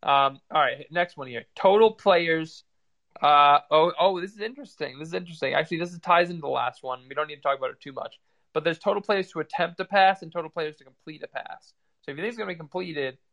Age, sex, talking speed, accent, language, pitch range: 20-39, male, 255 wpm, American, English, 140-175 Hz